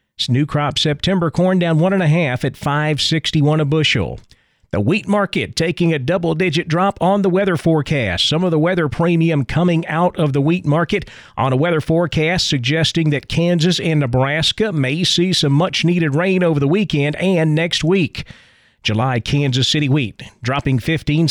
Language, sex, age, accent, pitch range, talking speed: English, male, 40-59, American, 135-170 Hz, 185 wpm